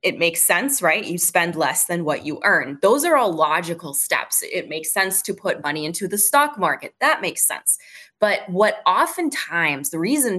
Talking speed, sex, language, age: 195 wpm, female, English, 20-39